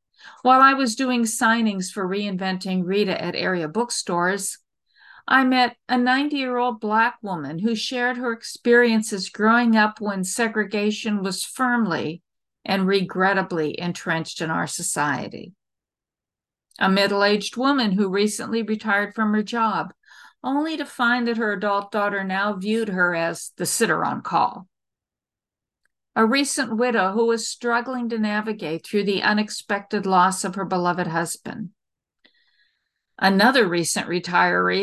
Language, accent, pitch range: English, American, 190-235 Hz